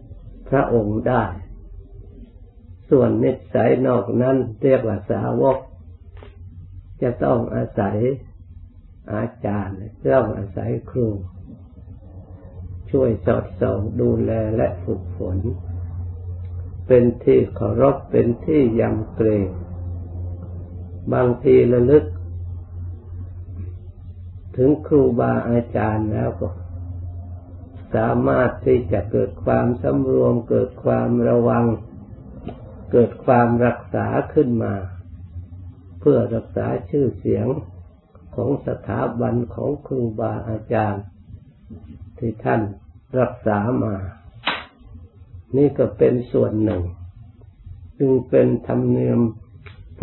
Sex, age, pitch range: male, 60-79, 90-120 Hz